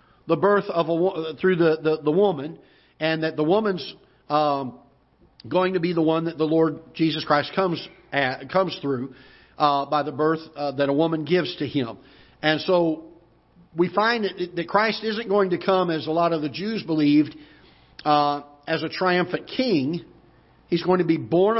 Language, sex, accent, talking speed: English, male, American, 185 wpm